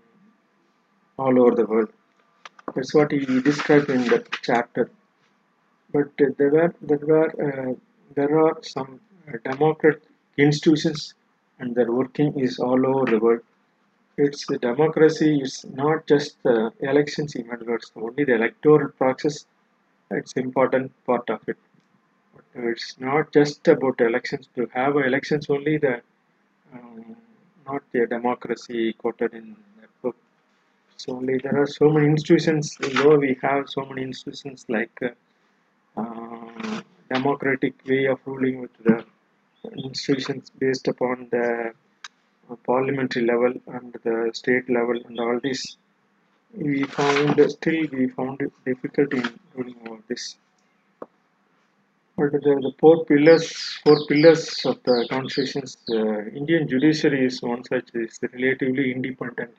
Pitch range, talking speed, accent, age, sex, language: 125-155 Hz, 135 wpm, native, 50-69, male, Tamil